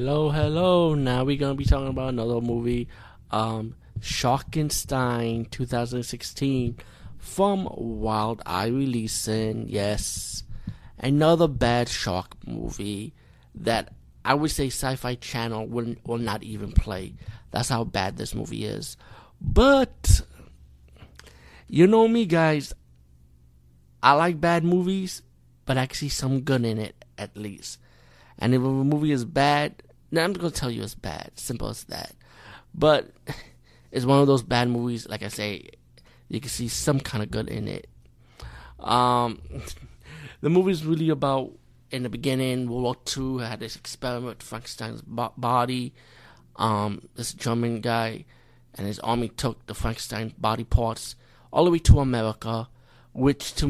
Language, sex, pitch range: English, male, 110-135 Hz